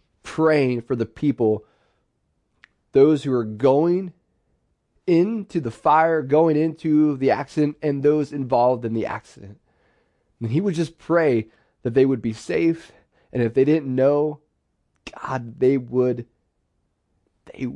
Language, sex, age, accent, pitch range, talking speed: English, male, 20-39, American, 115-140 Hz, 135 wpm